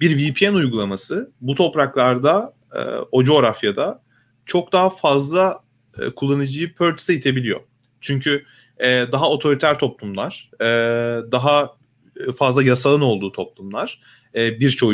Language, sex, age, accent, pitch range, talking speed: Turkish, male, 30-49, native, 125-165 Hz, 90 wpm